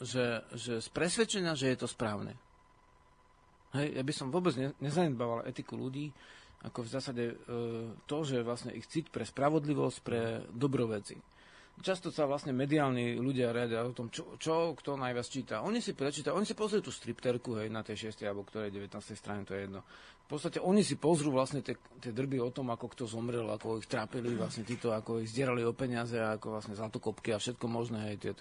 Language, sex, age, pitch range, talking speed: Slovak, male, 40-59, 115-150 Hz, 190 wpm